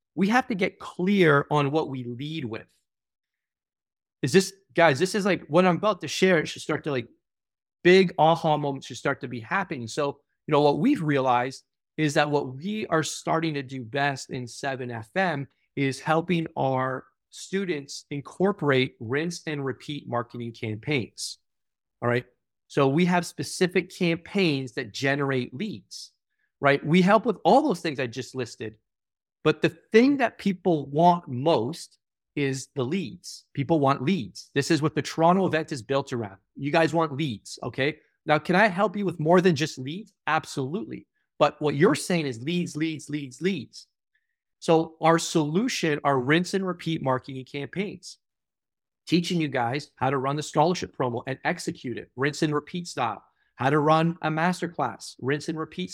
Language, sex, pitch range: English, male, 135-170 Hz